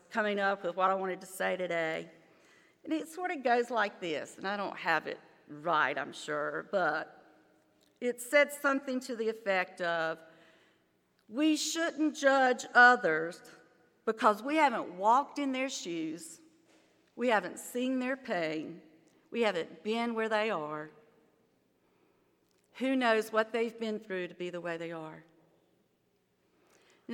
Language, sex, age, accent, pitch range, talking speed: English, female, 50-69, American, 180-235 Hz, 150 wpm